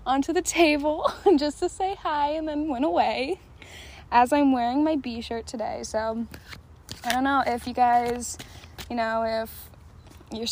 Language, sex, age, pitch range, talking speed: English, female, 10-29, 235-285 Hz, 165 wpm